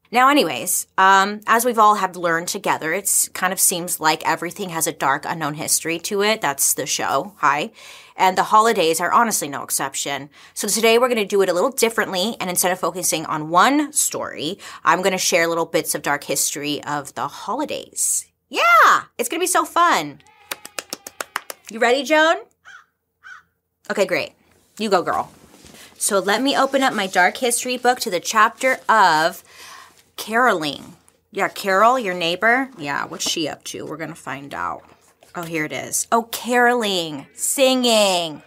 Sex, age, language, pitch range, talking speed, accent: female, 20-39, English, 175-255 Hz, 175 wpm, American